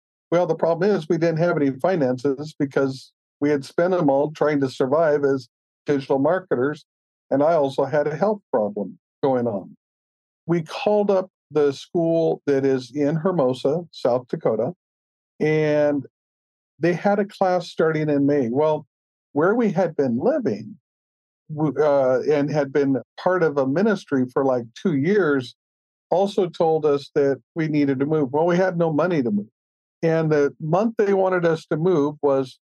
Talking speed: 165 wpm